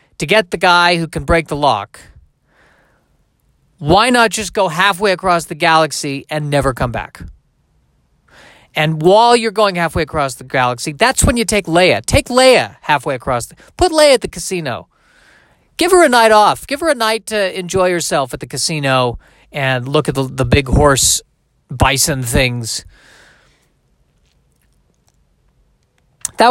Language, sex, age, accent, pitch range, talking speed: English, male, 40-59, American, 135-185 Hz, 155 wpm